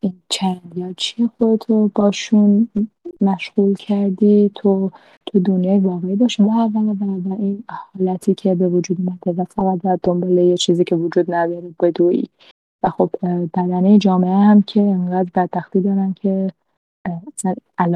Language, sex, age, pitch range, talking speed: Persian, female, 20-39, 185-240 Hz, 140 wpm